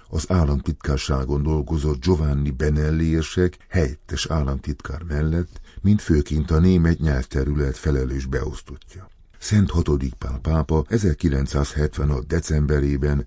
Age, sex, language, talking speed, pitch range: 50-69, male, Hungarian, 95 wpm, 70-85 Hz